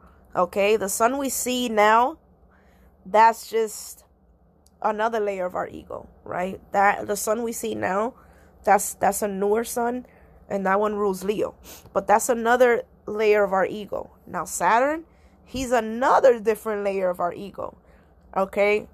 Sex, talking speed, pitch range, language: female, 150 wpm, 175-210 Hz, English